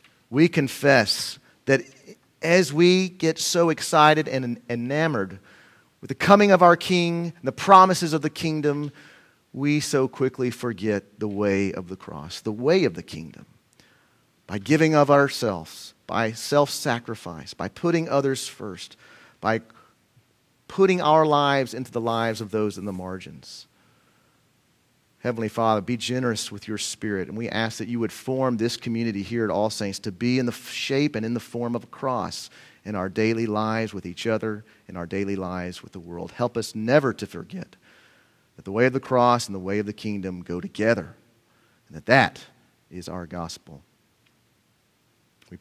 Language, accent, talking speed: English, American, 170 wpm